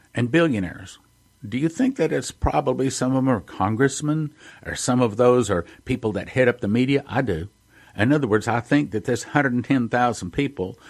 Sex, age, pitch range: male, 50-69, 105-140 Hz